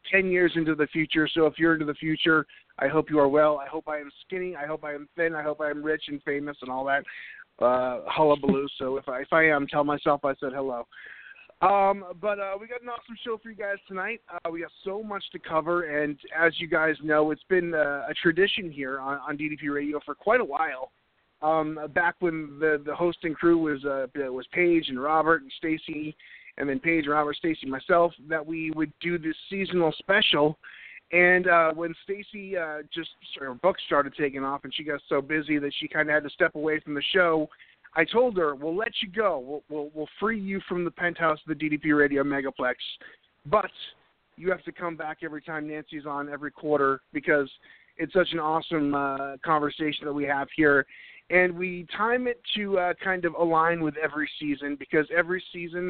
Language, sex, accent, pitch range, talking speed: English, male, American, 145-175 Hz, 215 wpm